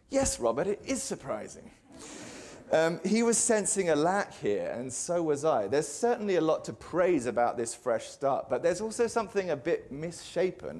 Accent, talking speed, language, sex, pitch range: British, 185 wpm, English, male, 115-190 Hz